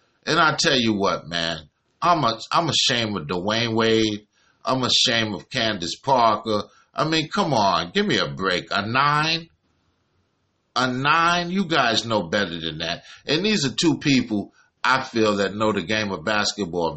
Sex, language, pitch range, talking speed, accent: male, English, 105-145 Hz, 175 wpm, American